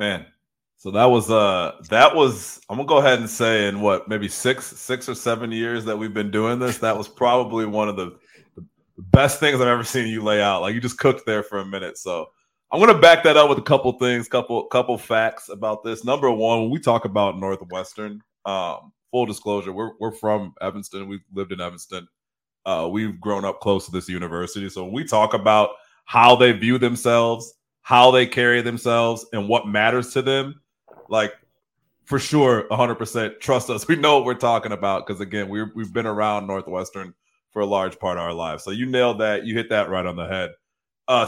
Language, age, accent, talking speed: English, 30-49, American, 210 wpm